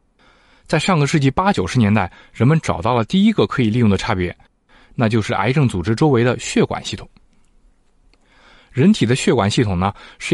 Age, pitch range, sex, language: 20-39, 110-165 Hz, male, Chinese